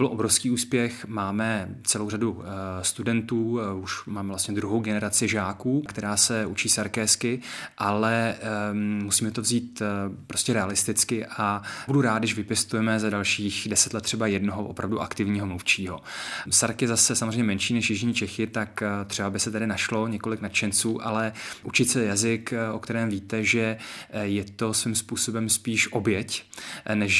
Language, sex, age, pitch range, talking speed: Czech, male, 20-39, 100-115 Hz, 150 wpm